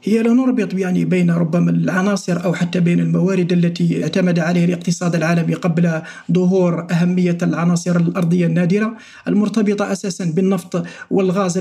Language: Arabic